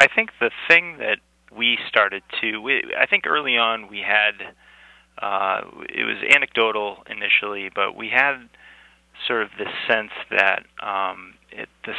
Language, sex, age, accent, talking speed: English, male, 30-49, American, 145 wpm